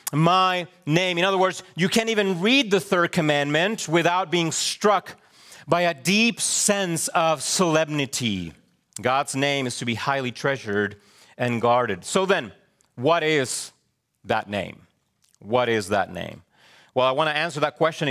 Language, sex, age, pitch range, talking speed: English, male, 40-59, 120-160 Hz, 155 wpm